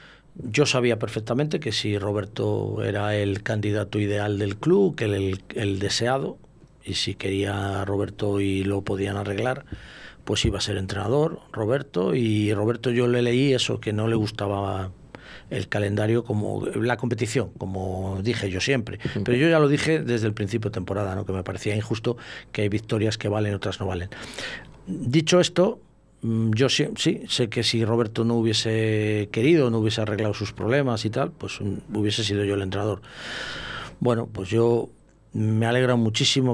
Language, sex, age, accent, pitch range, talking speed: Spanish, male, 40-59, Spanish, 105-125 Hz, 175 wpm